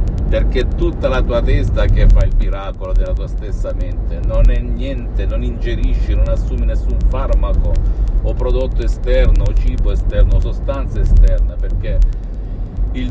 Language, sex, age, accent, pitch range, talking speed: Italian, male, 50-69, native, 90-110 Hz, 150 wpm